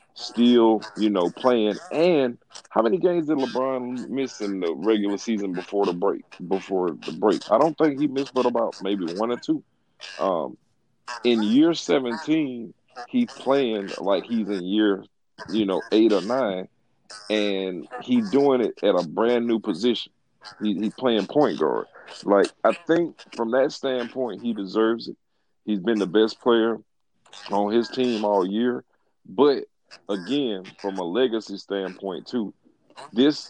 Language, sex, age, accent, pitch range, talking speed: English, male, 40-59, American, 105-130 Hz, 160 wpm